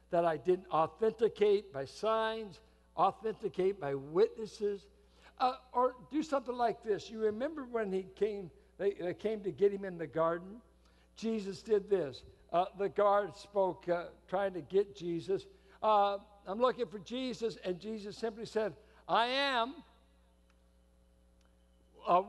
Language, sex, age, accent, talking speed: English, male, 60-79, American, 145 wpm